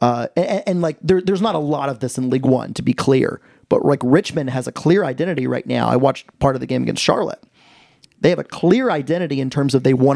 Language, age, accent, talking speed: English, 30-49, American, 260 wpm